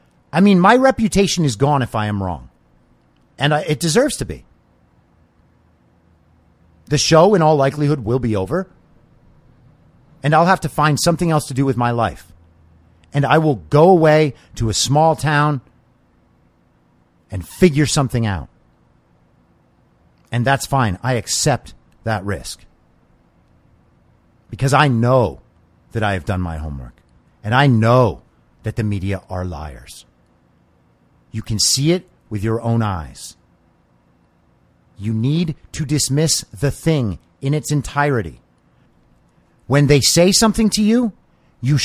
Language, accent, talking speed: English, American, 140 wpm